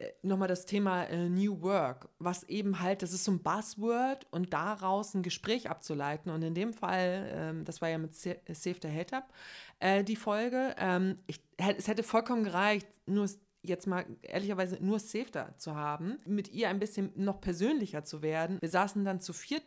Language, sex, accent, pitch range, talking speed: German, female, German, 180-230 Hz, 190 wpm